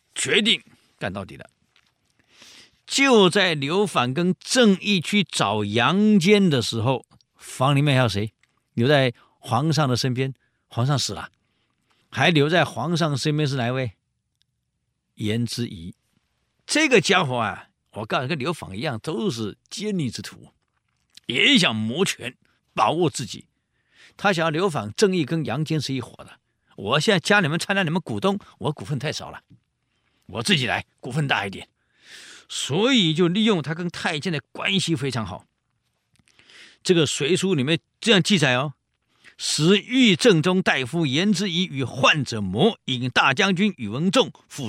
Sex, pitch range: male, 130-200 Hz